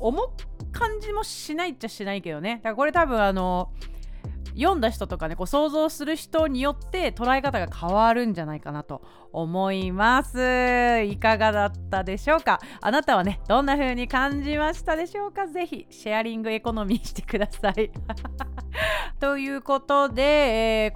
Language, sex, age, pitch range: Japanese, female, 30-49, 210-300 Hz